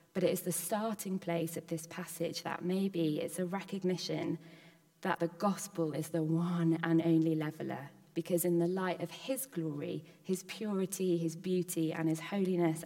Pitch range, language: 165-185 Hz, English